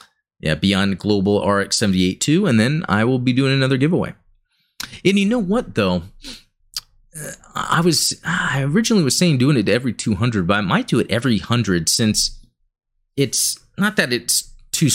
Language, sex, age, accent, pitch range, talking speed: English, male, 30-49, American, 95-125 Hz, 175 wpm